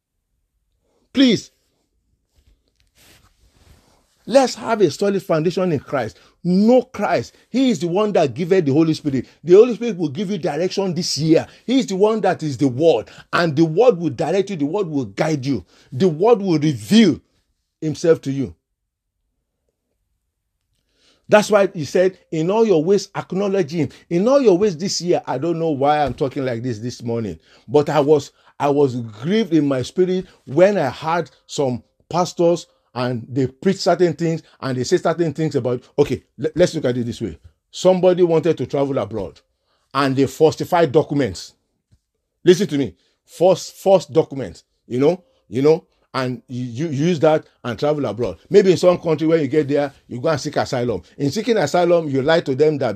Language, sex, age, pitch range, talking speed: English, male, 50-69, 130-180 Hz, 180 wpm